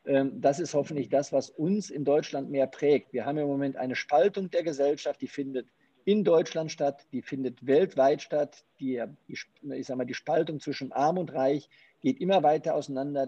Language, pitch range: German, 130-155 Hz